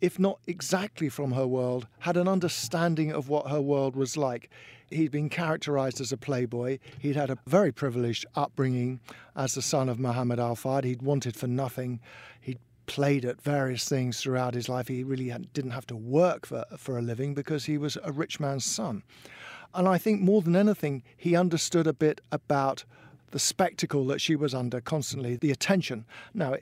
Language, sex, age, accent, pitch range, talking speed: English, male, 50-69, British, 130-165 Hz, 185 wpm